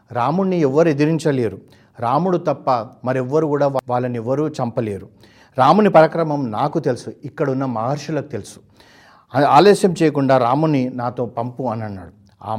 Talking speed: 120 wpm